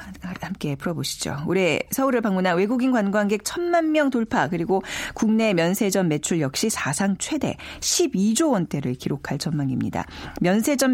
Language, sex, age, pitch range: Korean, female, 40-59, 165-255 Hz